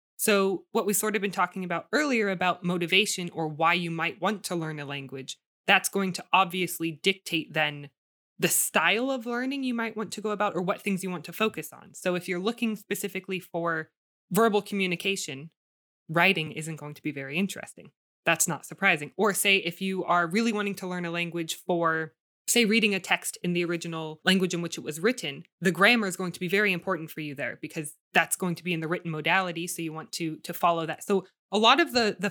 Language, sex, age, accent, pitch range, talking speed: English, female, 20-39, American, 165-200 Hz, 225 wpm